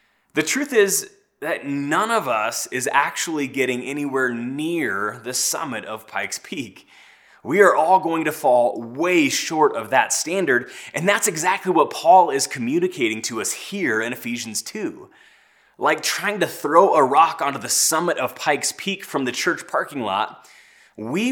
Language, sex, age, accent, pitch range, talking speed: English, male, 20-39, American, 120-200 Hz, 165 wpm